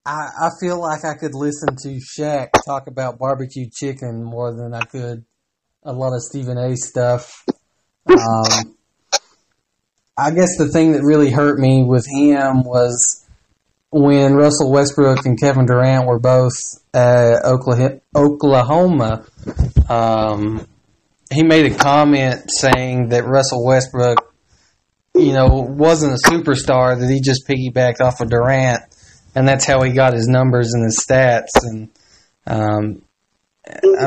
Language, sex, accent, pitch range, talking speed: English, male, American, 125-145 Hz, 135 wpm